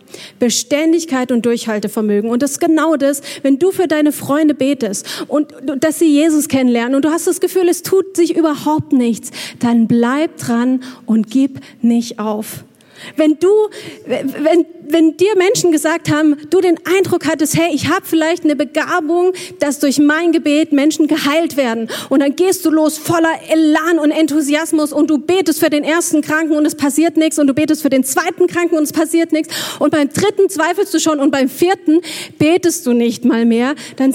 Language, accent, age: German, German, 40-59